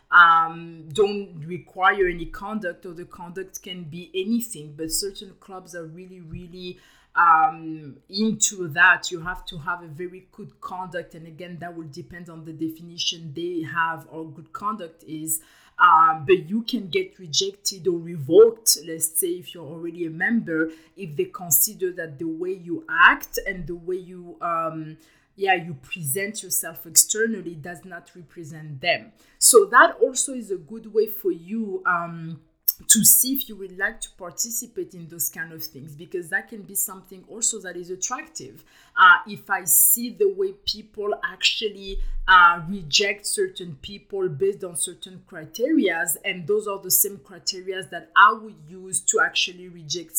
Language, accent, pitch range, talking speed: English, French, 170-210 Hz, 165 wpm